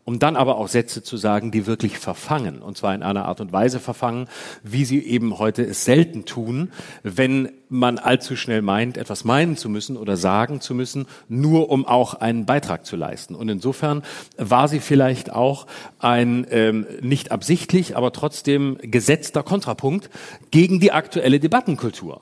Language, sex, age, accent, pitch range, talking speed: German, male, 40-59, German, 125-165 Hz, 170 wpm